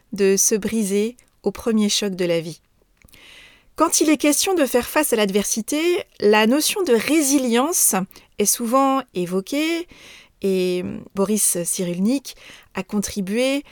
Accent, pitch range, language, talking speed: French, 200-265 Hz, French, 130 wpm